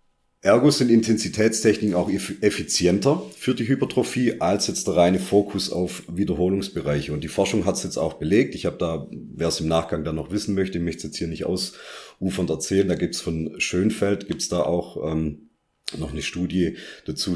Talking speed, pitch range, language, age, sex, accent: 190 wpm, 80-100 Hz, German, 40-59, male, German